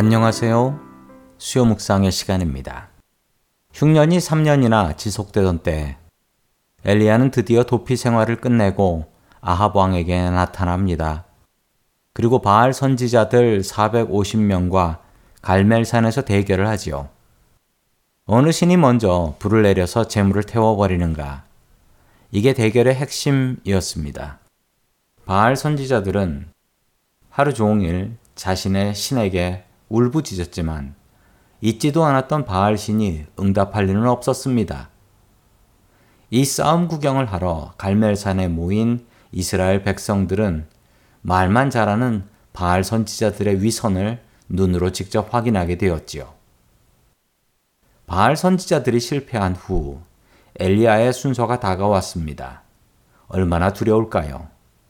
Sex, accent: male, native